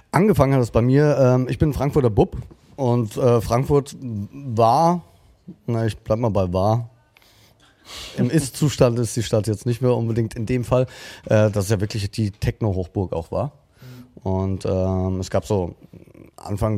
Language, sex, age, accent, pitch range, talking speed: German, male, 30-49, German, 100-120 Hz, 150 wpm